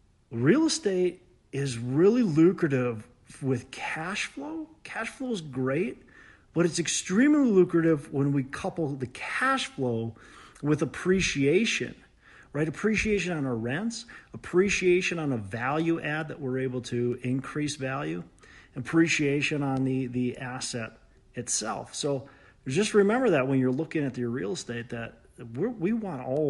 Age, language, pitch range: 40-59, English, 120-170 Hz